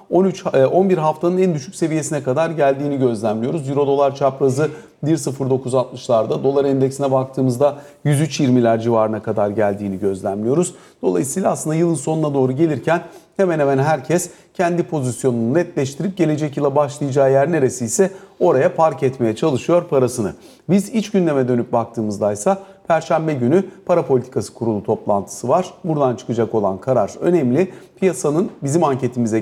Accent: native